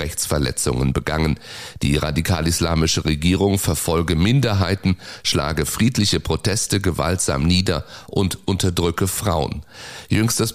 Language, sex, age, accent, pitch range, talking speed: German, male, 30-49, German, 80-100 Hz, 90 wpm